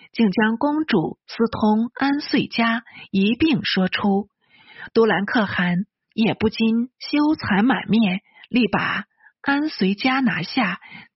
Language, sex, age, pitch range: Chinese, female, 50-69, 195-265 Hz